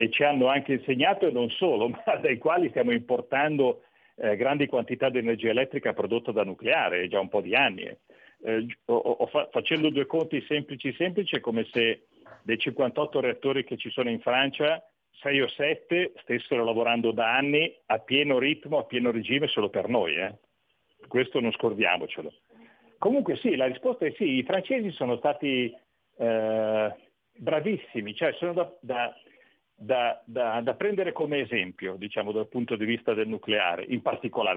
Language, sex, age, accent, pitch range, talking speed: Italian, male, 40-59, native, 115-160 Hz, 170 wpm